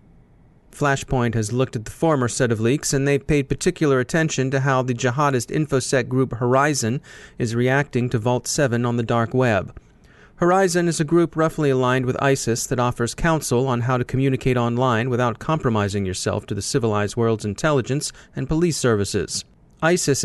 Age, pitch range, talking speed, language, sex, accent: 30-49, 120-140 Hz, 170 wpm, English, male, American